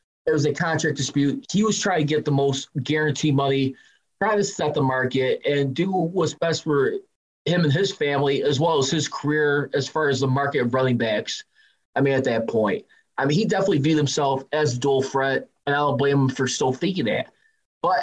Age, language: 20-39, English